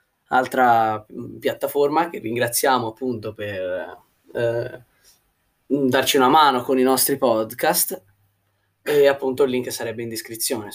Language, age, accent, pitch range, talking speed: Italian, 20-39, native, 120-165 Hz, 115 wpm